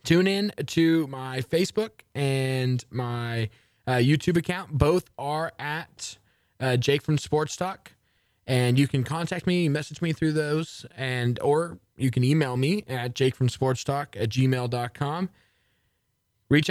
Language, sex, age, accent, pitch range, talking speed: English, male, 20-39, American, 120-155 Hz, 135 wpm